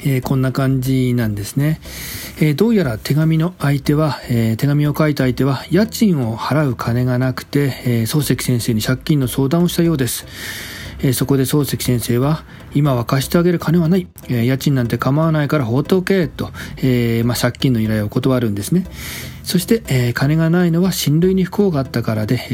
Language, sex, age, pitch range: Japanese, male, 40-59, 120-155 Hz